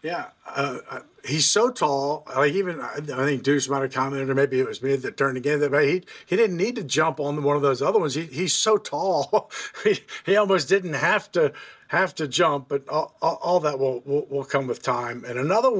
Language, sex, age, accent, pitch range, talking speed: English, male, 50-69, American, 135-175 Hz, 230 wpm